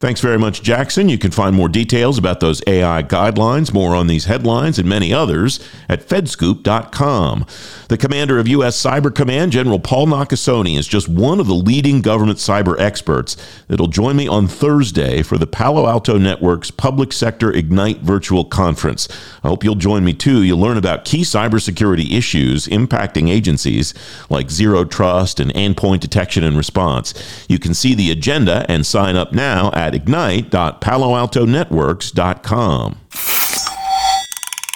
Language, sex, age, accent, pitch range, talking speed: English, male, 50-69, American, 85-115 Hz, 155 wpm